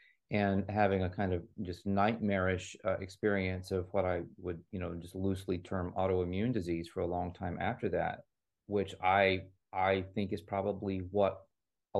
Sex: male